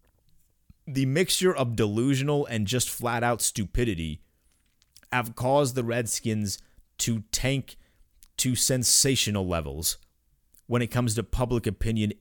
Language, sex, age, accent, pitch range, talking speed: English, male, 30-49, American, 85-120 Hz, 120 wpm